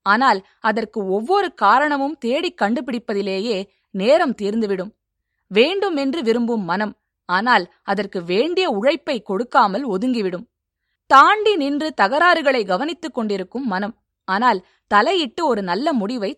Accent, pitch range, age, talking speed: native, 200-285 Hz, 20-39, 100 wpm